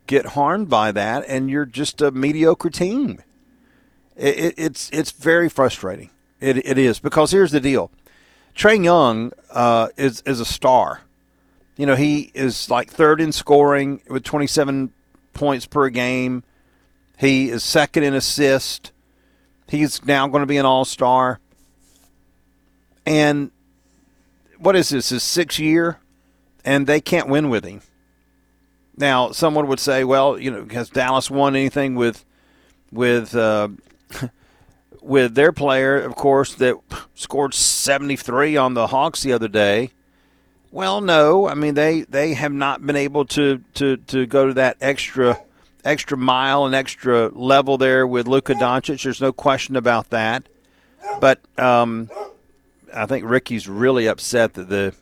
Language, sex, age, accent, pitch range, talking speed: English, male, 40-59, American, 115-145 Hz, 150 wpm